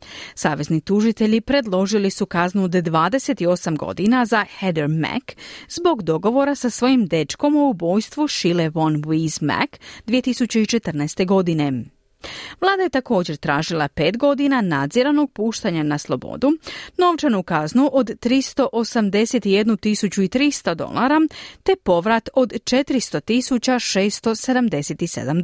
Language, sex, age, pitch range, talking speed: Croatian, female, 40-59, 160-255 Hz, 100 wpm